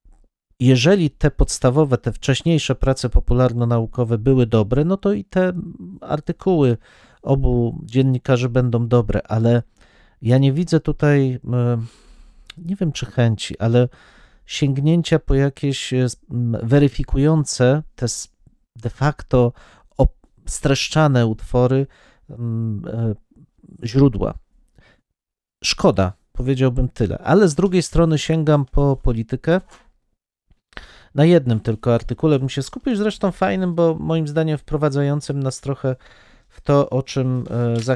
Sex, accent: male, native